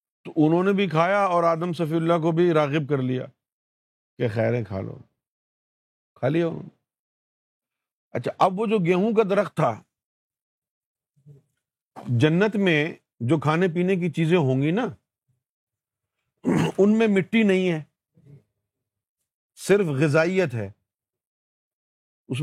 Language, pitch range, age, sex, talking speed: Urdu, 130-185 Hz, 50-69, male, 125 wpm